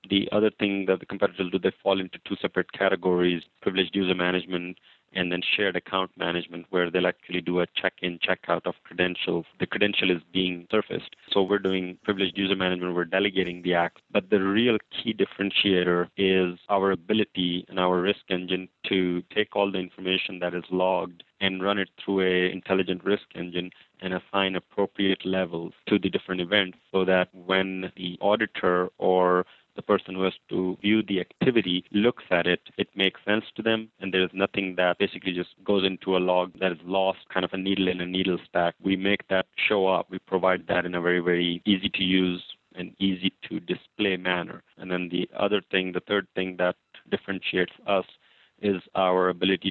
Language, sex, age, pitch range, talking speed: English, male, 30-49, 90-95 Hz, 195 wpm